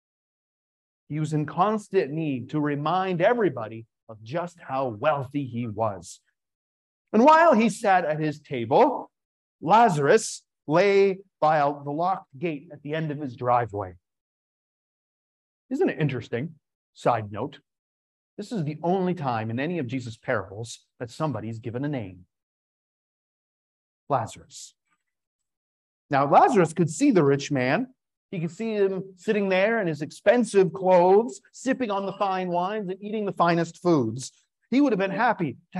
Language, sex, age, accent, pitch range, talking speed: English, male, 40-59, American, 130-195 Hz, 145 wpm